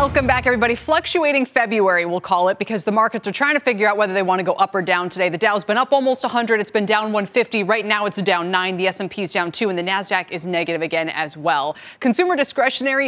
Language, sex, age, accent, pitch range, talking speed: English, female, 20-39, American, 180-245 Hz, 250 wpm